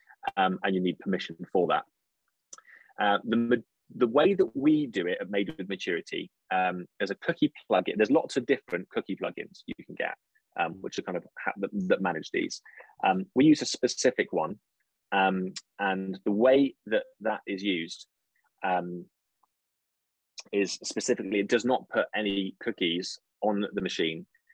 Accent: British